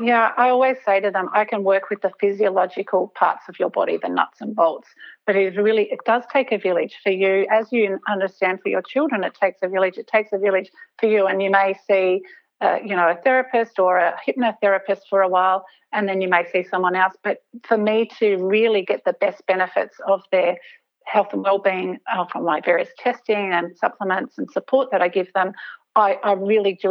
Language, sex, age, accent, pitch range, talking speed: English, female, 40-59, Australian, 185-215 Hz, 220 wpm